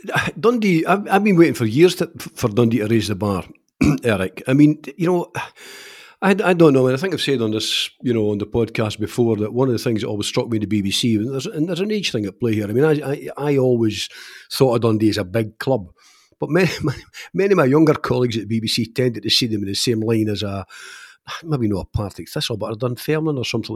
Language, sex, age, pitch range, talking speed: English, male, 50-69, 110-150 Hz, 260 wpm